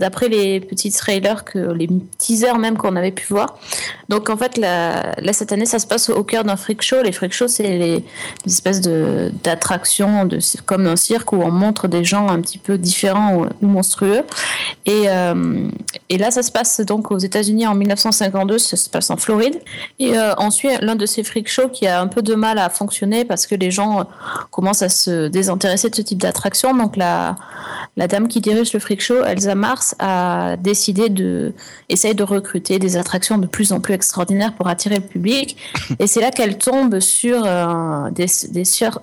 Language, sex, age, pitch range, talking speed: French, female, 30-49, 185-220 Hz, 195 wpm